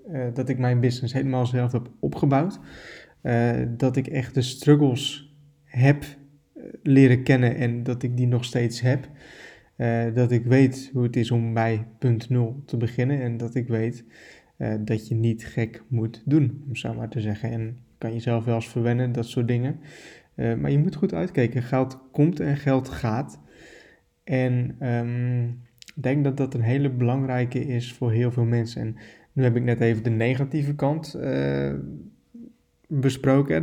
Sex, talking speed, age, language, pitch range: male, 175 wpm, 20-39, Dutch, 120-135 Hz